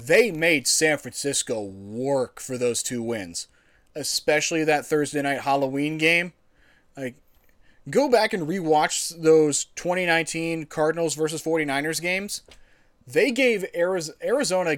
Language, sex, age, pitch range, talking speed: English, male, 20-39, 150-190 Hz, 120 wpm